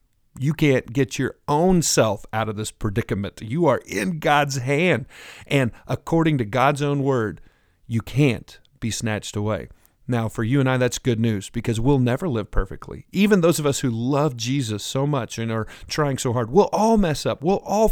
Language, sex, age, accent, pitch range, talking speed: English, male, 40-59, American, 110-150 Hz, 200 wpm